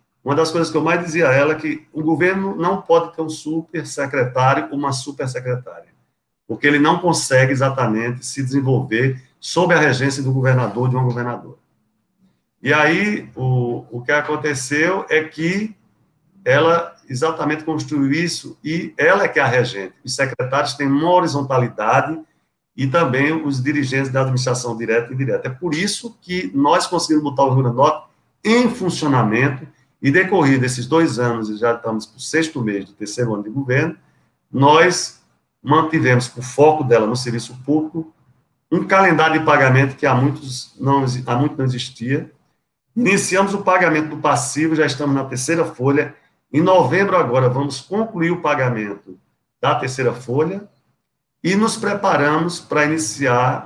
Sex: male